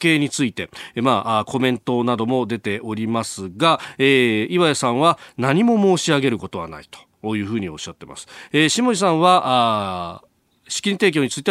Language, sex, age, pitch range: Japanese, male, 40-59, 110-155 Hz